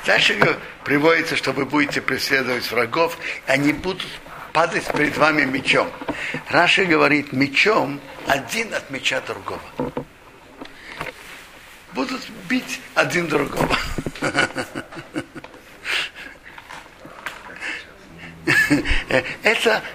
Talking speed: 80 wpm